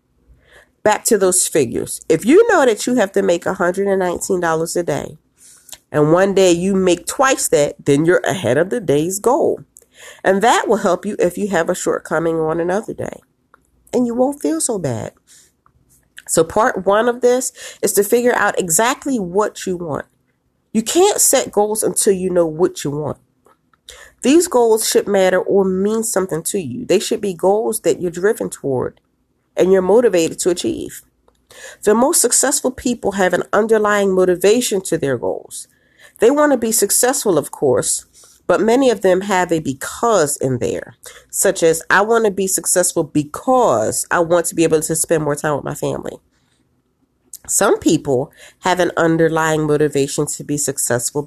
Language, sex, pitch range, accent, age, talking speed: English, female, 165-230 Hz, American, 40-59, 175 wpm